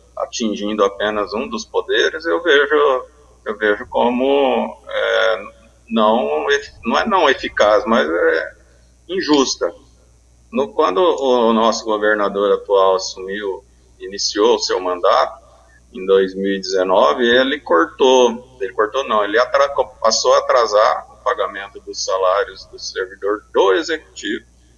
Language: Portuguese